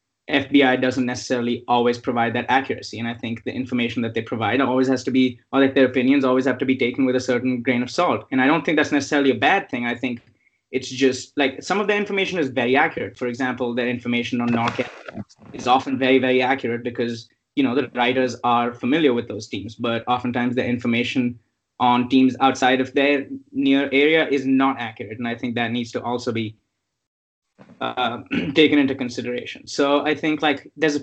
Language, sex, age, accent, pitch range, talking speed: English, male, 20-39, Indian, 120-140 Hz, 210 wpm